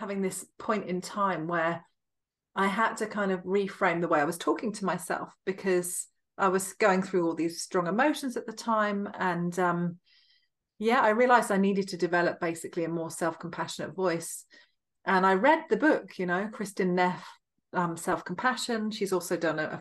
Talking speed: 180 wpm